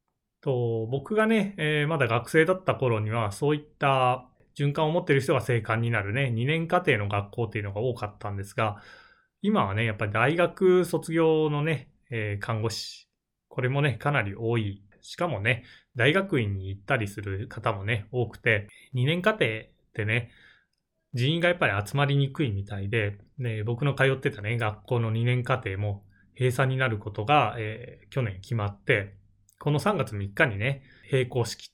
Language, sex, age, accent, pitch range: Japanese, male, 20-39, native, 105-140 Hz